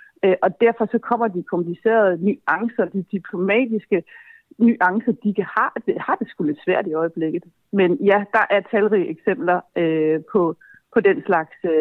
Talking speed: 165 wpm